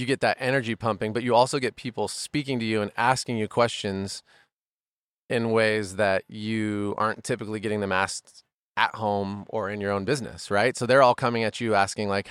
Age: 30-49